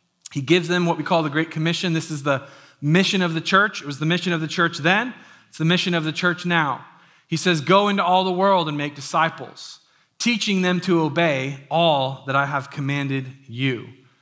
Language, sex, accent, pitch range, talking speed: English, male, American, 150-180 Hz, 215 wpm